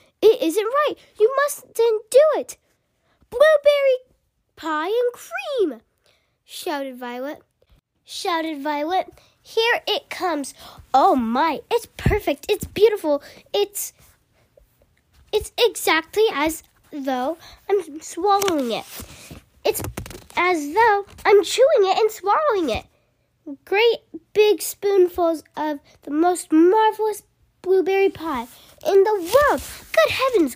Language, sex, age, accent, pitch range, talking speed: English, female, 10-29, American, 295-420 Hz, 110 wpm